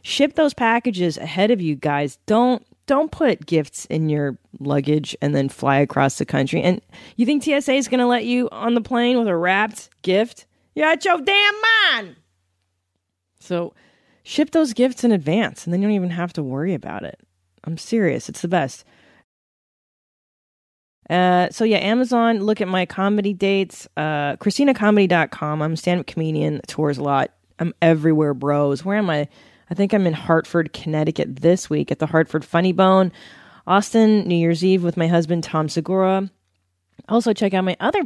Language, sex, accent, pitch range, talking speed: English, female, American, 150-215 Hz, 180 wpm